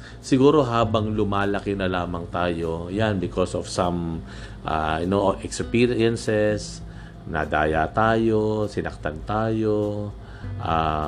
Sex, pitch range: male, 90-110 Hz